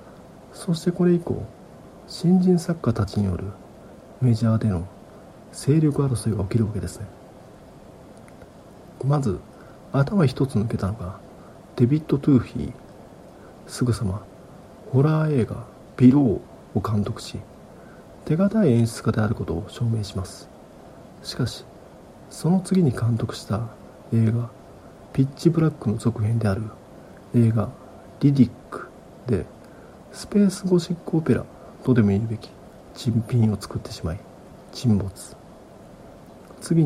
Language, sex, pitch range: Japanese, male, 105-145 Hz